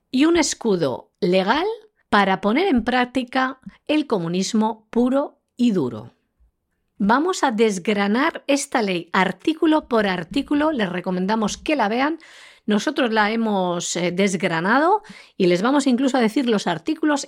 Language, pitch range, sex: Spanish, 180-275 Hz, female